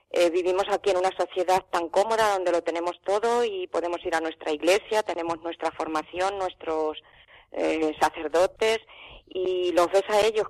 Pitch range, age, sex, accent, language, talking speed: 160-190 Hz, 20-39, female, Spanish, Spanish, 165 wpm